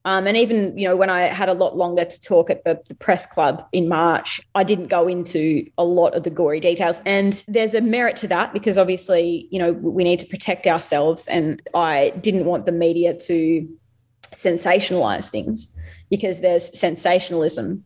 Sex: female